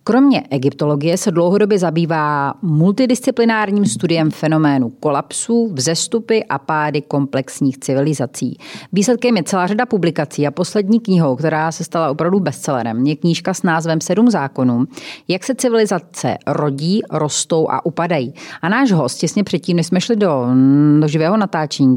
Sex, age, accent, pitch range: female, 30-49, native, 145-180 Hz